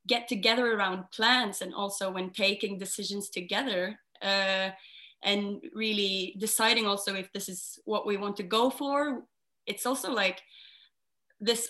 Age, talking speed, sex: 20-39, 145 wpm, female